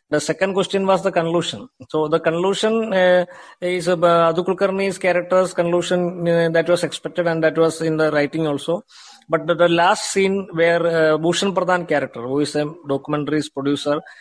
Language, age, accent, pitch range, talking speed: Hindi, 20-39, native, 145-180 Hz, 170 wpm